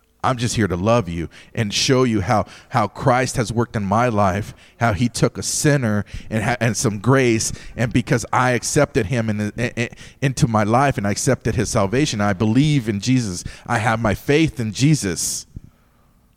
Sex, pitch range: male, 105-130 Hz